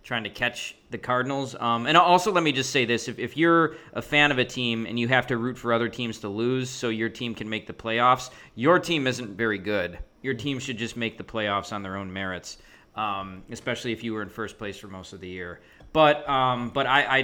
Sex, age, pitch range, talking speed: male, 20-39, 115-145 Hz, 250 wpm